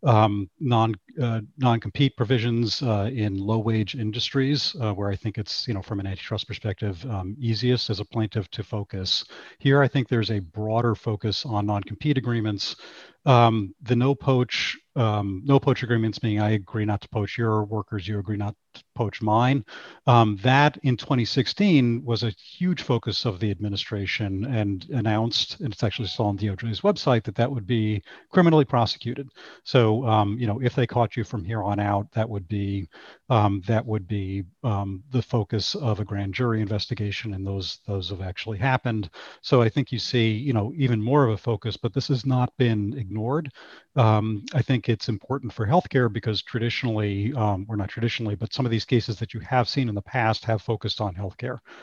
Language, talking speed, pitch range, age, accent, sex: English, 195 wpm, 105-125 Hz, 40-59, American, male